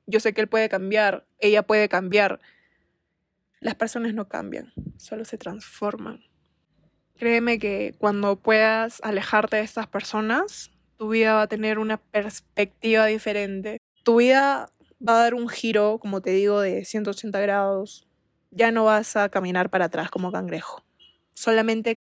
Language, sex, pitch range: Spanish, female, 210-250 Hz